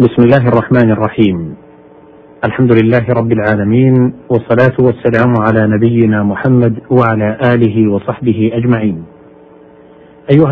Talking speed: 105 wpm